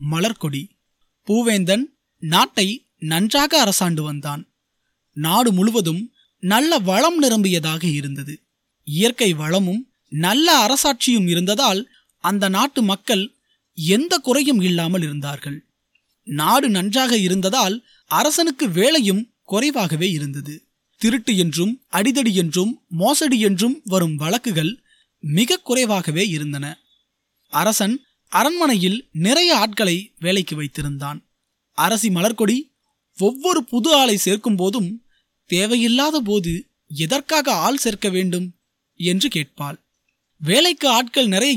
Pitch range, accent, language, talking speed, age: 175-250 Hz, native, Tamil, 95 wpm, 20-39